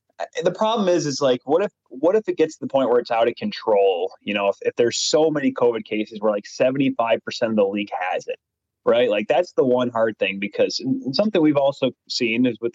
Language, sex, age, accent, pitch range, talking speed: English, male, 20-39, American, 115-150 Hz, 235 wpm